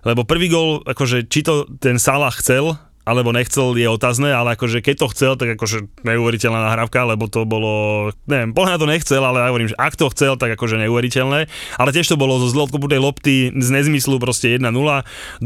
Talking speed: 200 wpm